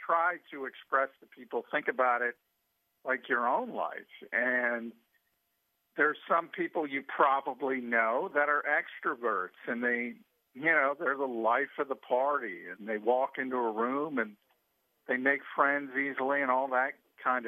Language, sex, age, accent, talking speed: English, male, 50-69, American, 160 wpm